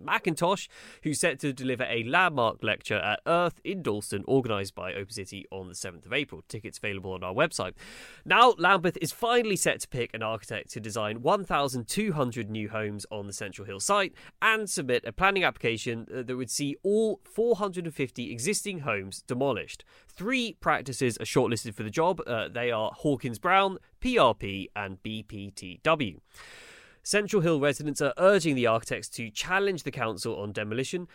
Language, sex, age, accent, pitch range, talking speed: English, male, 20-39, British, 110-165 Hz, 165 wpm